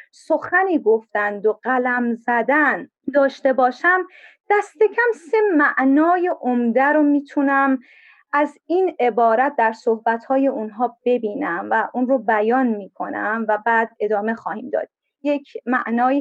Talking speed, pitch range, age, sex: 120 wpm, 245-335 Hz, 30-49, female